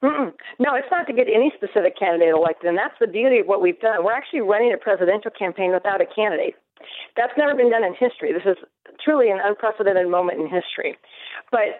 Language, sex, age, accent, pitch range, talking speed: English, female, 40-59, American, 180-255 Hz, 220 wpm